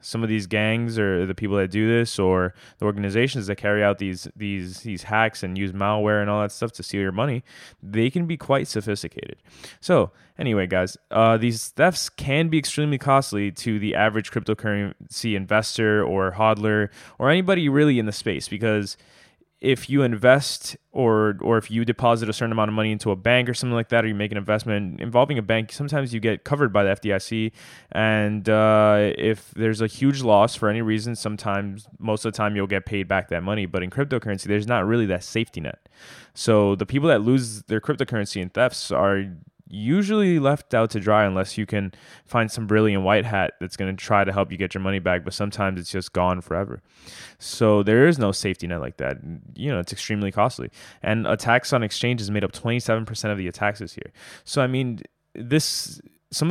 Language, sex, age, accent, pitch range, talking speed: English, male, 20-39, American, 100-115 Hz, 205 wpm